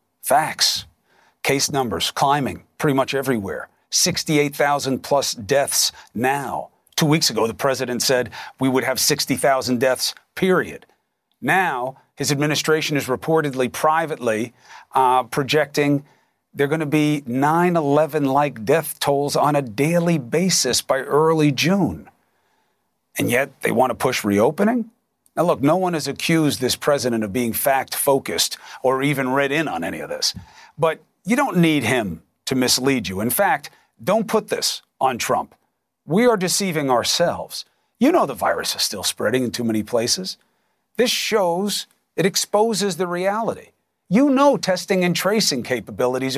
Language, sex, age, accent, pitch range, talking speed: English, male, 40-59, American, 130-180 Hz, 150 wpm